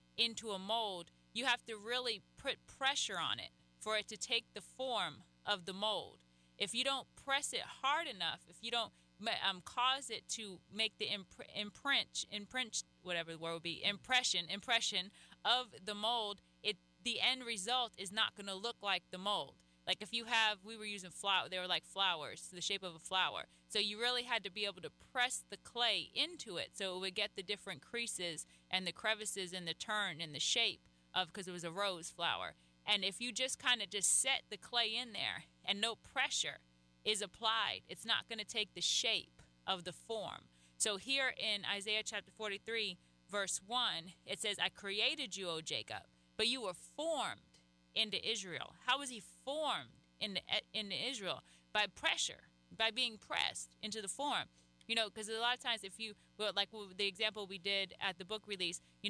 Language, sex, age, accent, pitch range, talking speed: English, female, 20-39, American, 180-230 Hz, 200 wpm